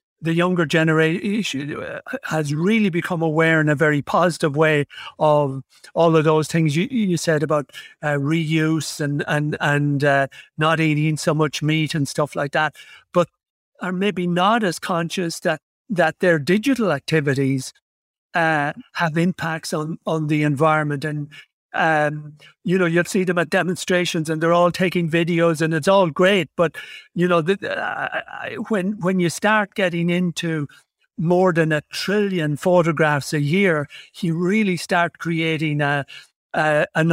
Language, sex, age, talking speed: English, male, 60-79, 160 wpm